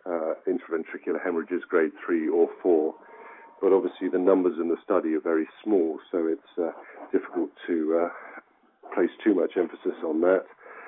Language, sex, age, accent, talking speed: English, male, 50-69, British, 160 wpm